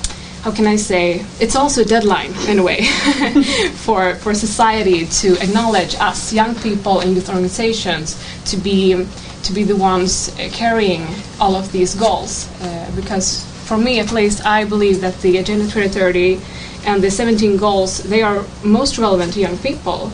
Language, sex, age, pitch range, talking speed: Swedish, female, 20-39, 180-210 Hz, 170 wpm